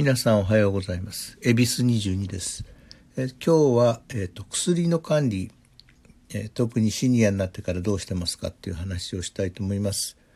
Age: 60-79